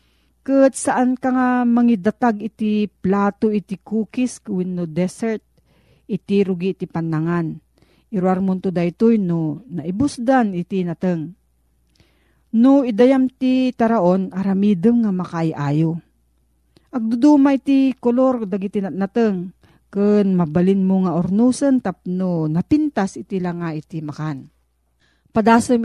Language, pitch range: Filipino, 165-220 Hz